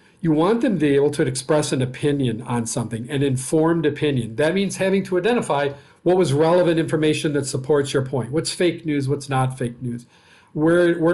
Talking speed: 200 wpm